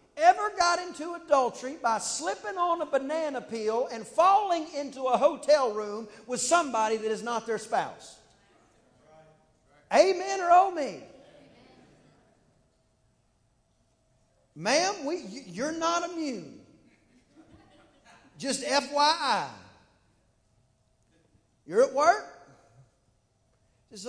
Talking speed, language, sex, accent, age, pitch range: 90 wpm, English, male, American, 50-69, 210-345 Hz